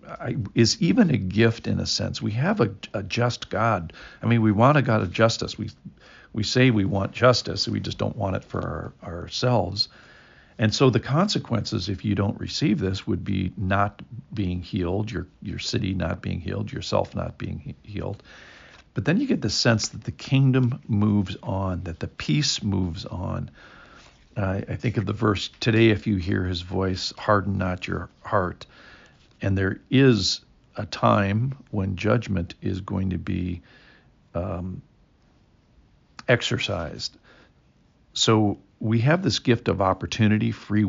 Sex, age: male, 50-69